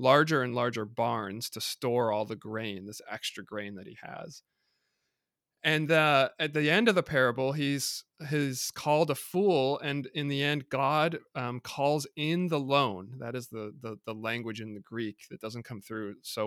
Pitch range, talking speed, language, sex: 110-145 Hz, 190 wpm, English, male